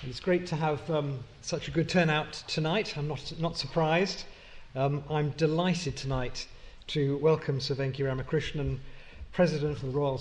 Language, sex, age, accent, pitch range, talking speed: English, male, 40-59, British, 130-160 Hz, 160 wpm